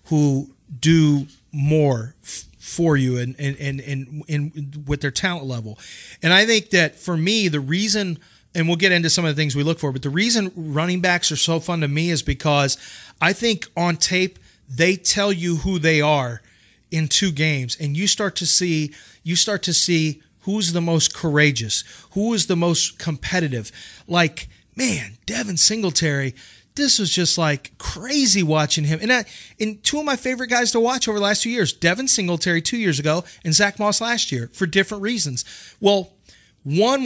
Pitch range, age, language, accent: 150-200 Hz, 30-49, English, American